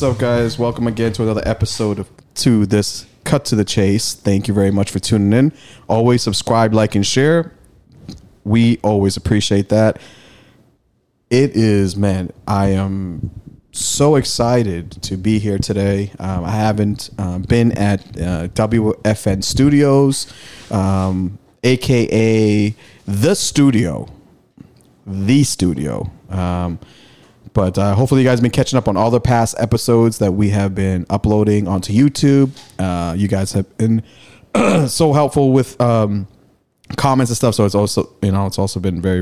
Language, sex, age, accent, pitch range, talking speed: English, male, 30-49, American, 95-120 Hz, 155 wpm